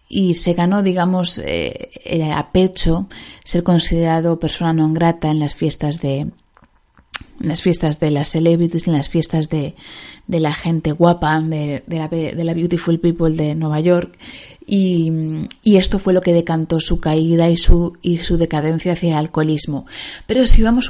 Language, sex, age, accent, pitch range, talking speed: Spanish, female, 30-49, Spanish, 160-185 Hz, 170 wpm